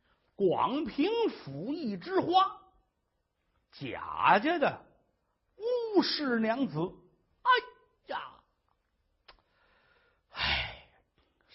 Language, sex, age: Chinese, male, 50-69